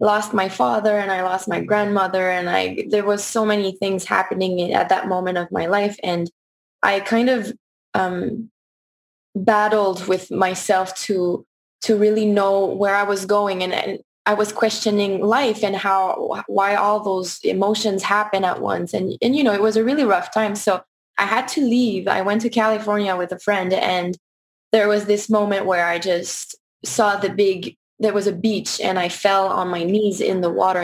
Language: English